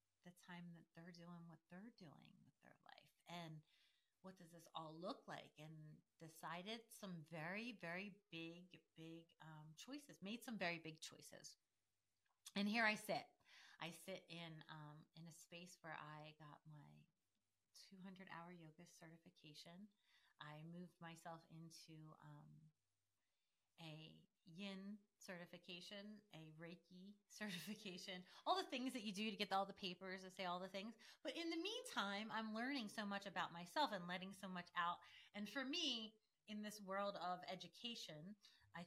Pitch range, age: 165-205 Hz, 30-49